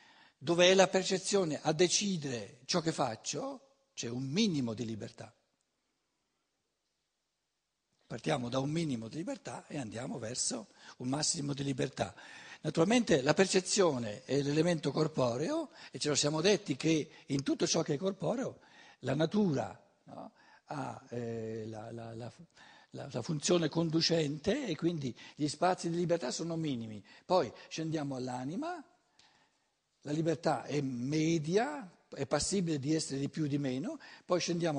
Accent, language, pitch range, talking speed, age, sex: native, Italian, 130-175 Hz, 140 wpm, 60-79, male